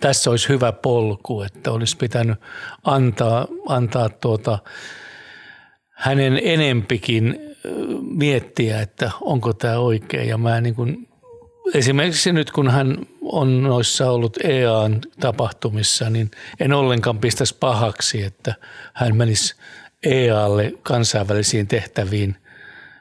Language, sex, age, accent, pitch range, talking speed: Finnish, male, 60-79, native, 110-130 Hz, 105 wpm